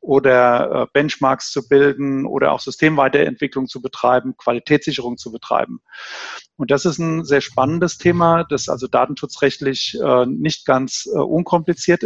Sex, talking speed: male, 125 wpm